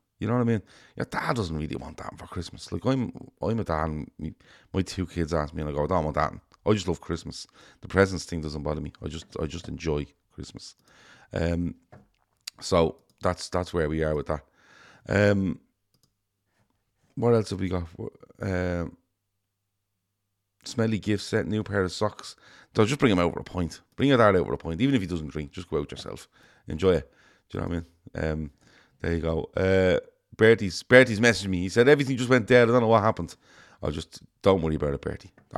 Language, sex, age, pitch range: English, male, 40-59, 85-105 Hz